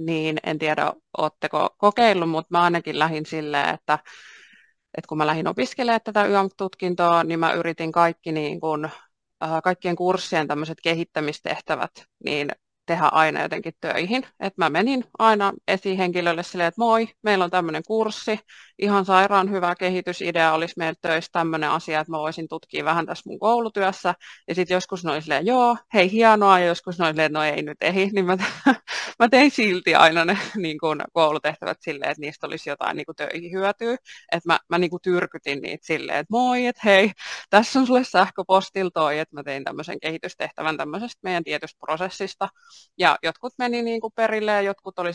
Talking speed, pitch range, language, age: 170 wpm, 160-205 Hz, Finnish, 30-49